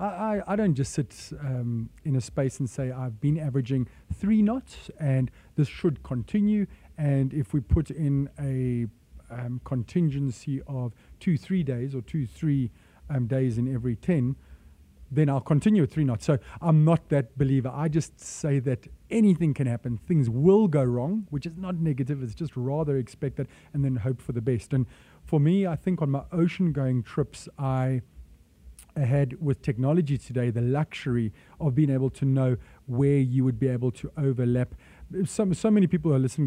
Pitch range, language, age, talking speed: 125-150 Hz, English, 30-49, 185 wpm